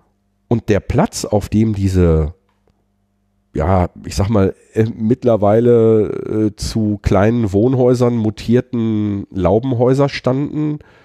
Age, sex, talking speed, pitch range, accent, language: 40-59, male, 105 wpm, 100-130 Hz, German, German